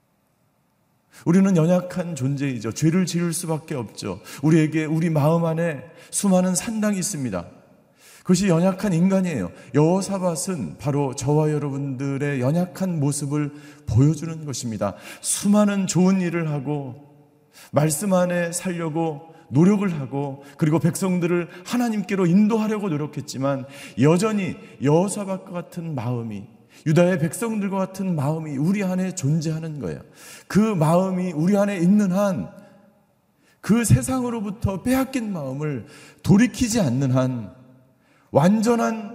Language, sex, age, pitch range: Korean, male, 40-59, 135-185 Hz